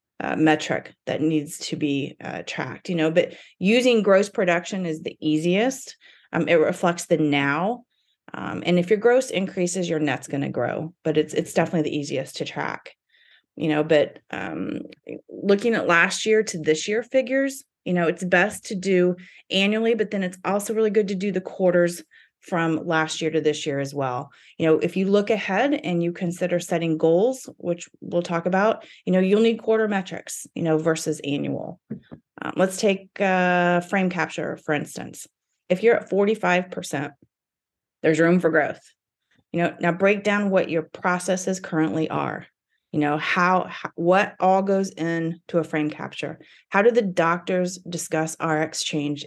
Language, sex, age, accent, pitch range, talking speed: English, female, 30-49, American, 160-195 Hz, 180 wpm